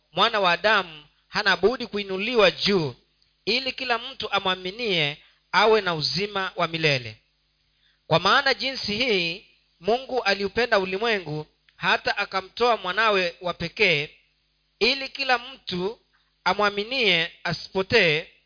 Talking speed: 105 wpm